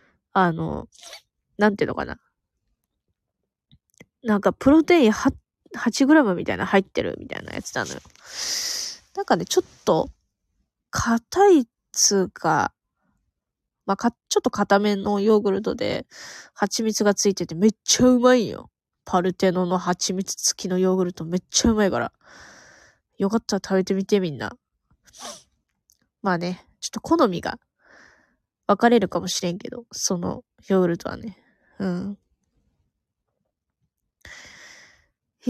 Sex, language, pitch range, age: female, Japanese, 180-240 Hz, 20-39